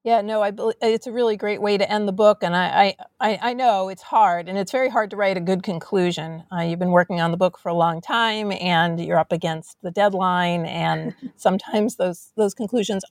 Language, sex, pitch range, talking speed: English, female, 185-230 Hz, 230 wpm